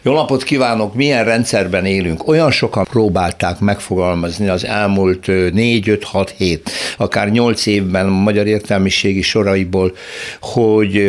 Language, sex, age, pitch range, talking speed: Hungarian, male, 60-79, 95-120 Hz, 115 wpm